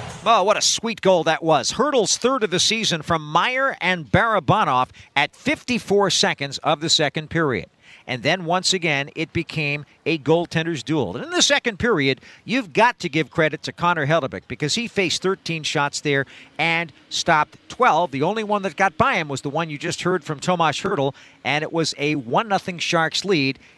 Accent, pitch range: American, 150-245 Hz